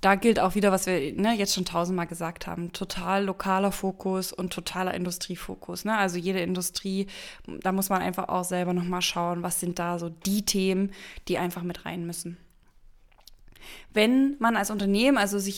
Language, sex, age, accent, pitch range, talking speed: German, female, 20-39, German, 185-230 Hz, 175 wpm